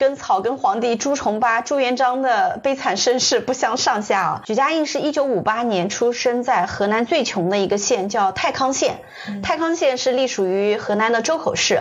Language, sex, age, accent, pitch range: Chinese, female, 30-49, native, 210-265 Hz